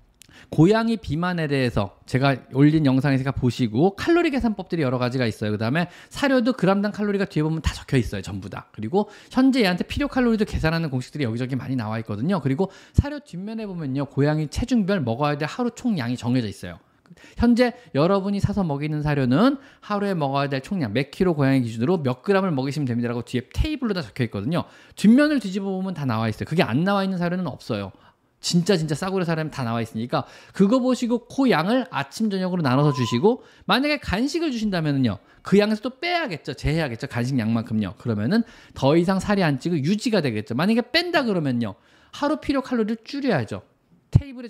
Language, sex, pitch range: Korean, male, 130-210 Hz